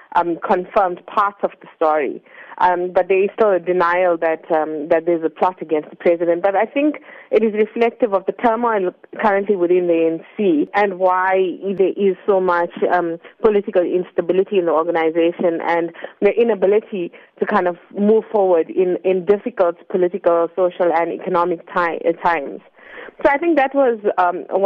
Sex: female